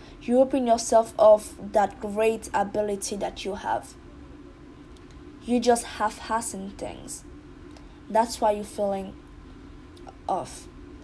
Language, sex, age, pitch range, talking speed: English, female, 20-39, 210-265 Hz, 105 wpm